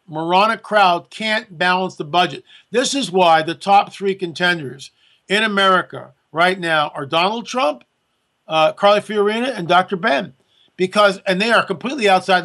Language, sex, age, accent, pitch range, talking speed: English, male, 50-69, American, 170-210 Hz, 155 wpm